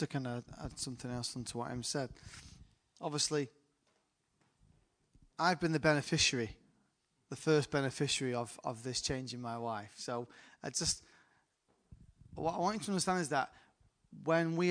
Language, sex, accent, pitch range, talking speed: English, male, British, 135-180 Hz, 155 wpm